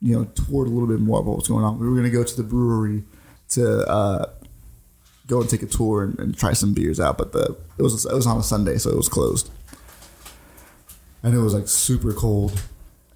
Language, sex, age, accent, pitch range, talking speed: English, male, 30-49, American, 100-120 Hz, 235 wpm